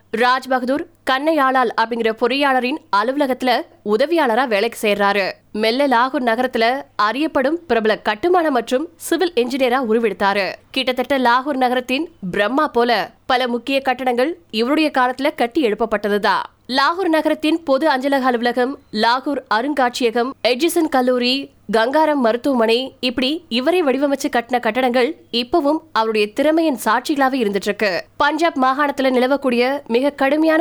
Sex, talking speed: female, 90 wpm